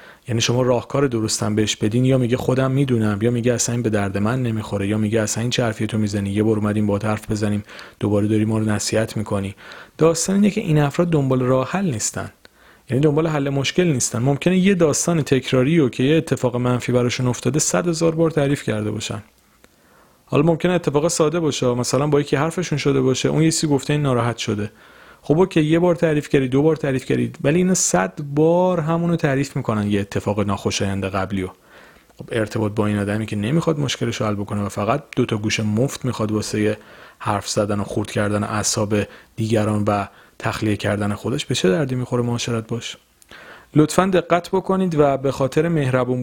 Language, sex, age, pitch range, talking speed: Persian, male, 40-59, 105-150 Hz, 195 wpm